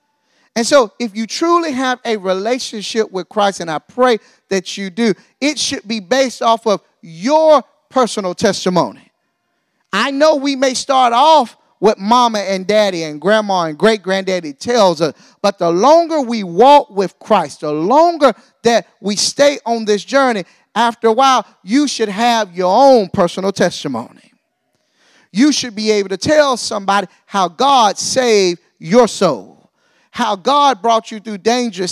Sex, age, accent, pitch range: male, 30-49, American, 200-265 Hz